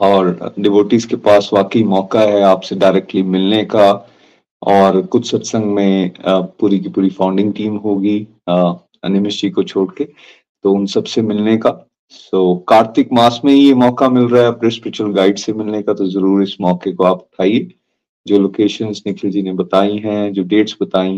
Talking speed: 180 wpm